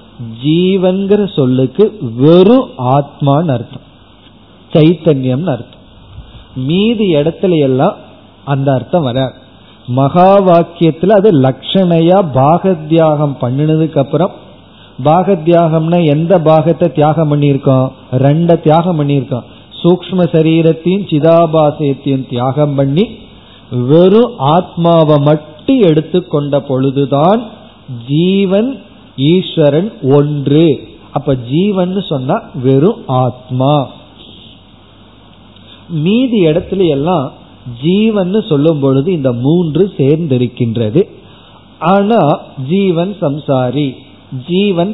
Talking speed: 60 wpm